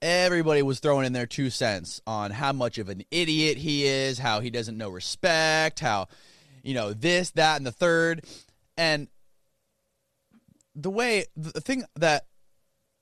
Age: 20-39